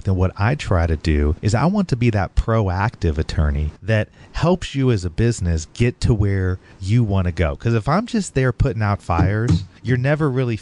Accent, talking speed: American, 215 wpm